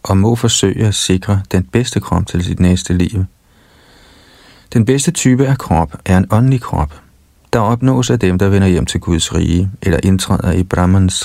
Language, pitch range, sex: Danish, 85-110 Hz, male